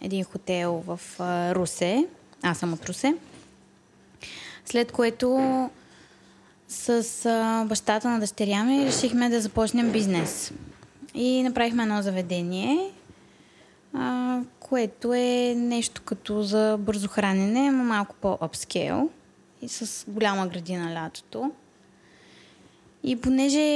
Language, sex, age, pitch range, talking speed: Bulgarian, female, 20-39, 195-250 Hz, 100 wpm